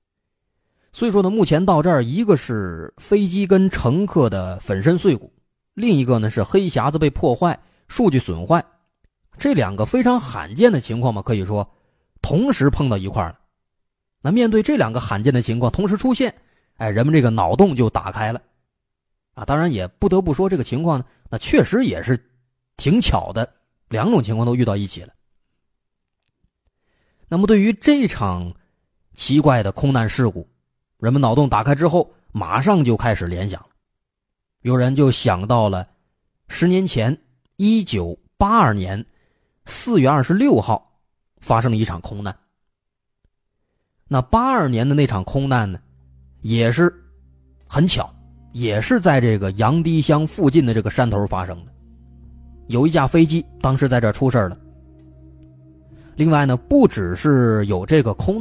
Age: 30-49